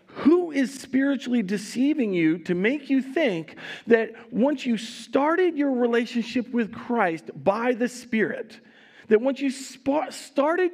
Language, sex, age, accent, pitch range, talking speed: English, male, 40-59, American, 165-245 Hz, 135 wpm